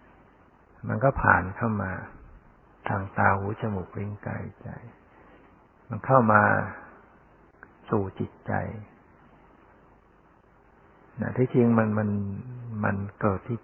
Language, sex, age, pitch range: Thai, male, 60-79, 100-115 Hz